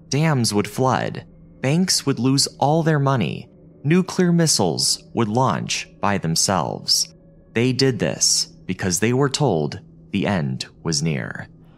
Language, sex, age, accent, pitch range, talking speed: English, male, 30-49, American, 95-150 Hz, 135 wpm